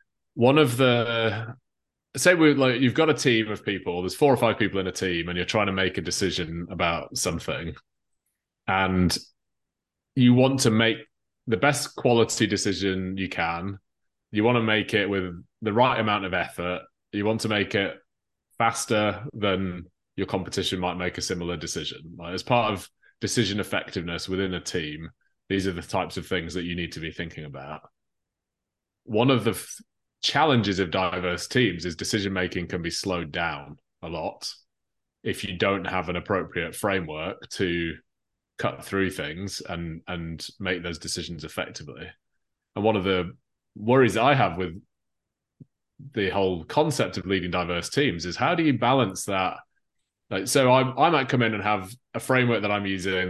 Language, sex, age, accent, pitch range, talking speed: English, male, 20-39, British, 90-115 Hz, 175 wpm